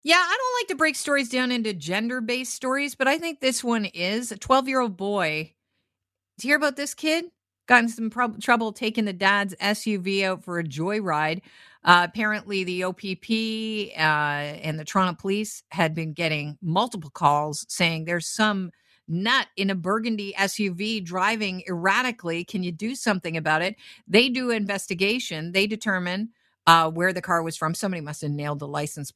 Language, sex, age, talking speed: English, female, 50-69, 175 wpm